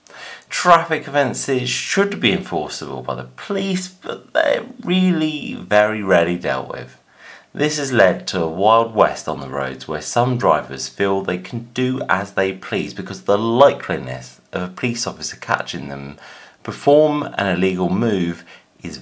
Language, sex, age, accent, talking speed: English, male, 30-49, British, 155 wpm